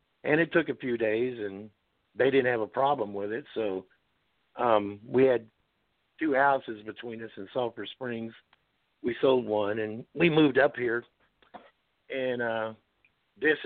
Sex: male